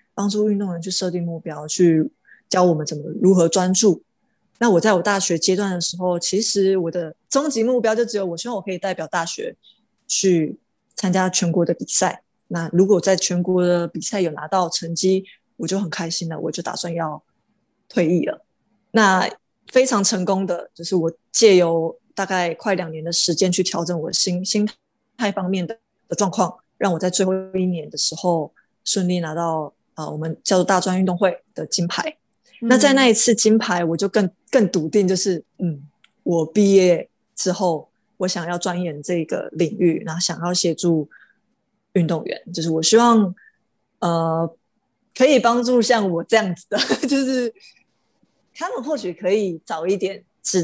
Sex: female